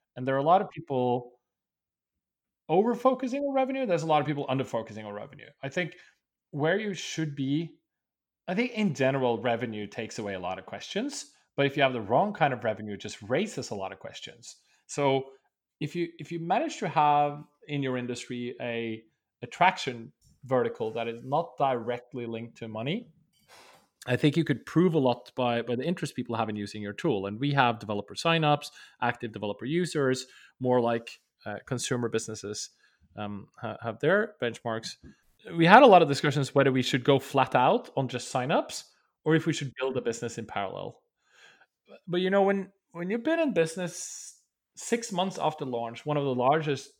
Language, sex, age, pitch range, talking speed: English, male, 30-49, 120-160 Hz, 190 wpm